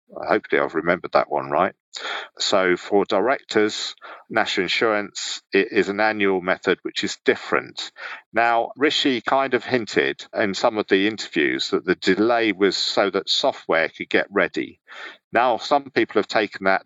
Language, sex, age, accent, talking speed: English, male, 50-69, British, 155 wpm